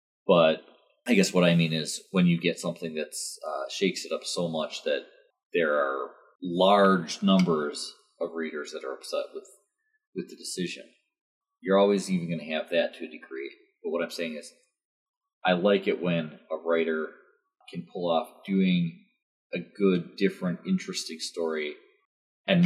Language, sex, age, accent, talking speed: English, male, 30-49, American, 165 wpm